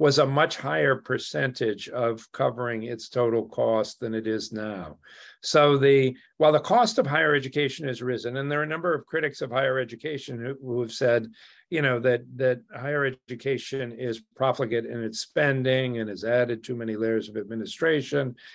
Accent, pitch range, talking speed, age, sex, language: American, 120-145 Hz, 180 wpm, 50-69, male, English